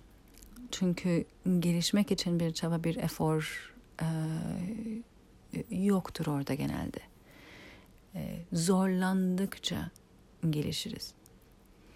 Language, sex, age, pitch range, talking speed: Turkish, female, 50-69, 160-205 Hz, 70 wpm